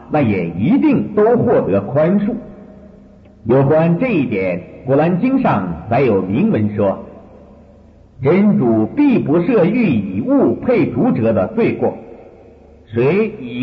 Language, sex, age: Chinese, male, 50-69